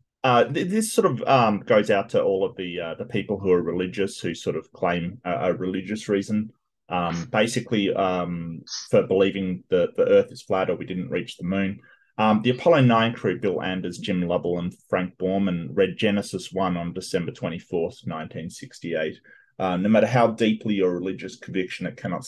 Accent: Australian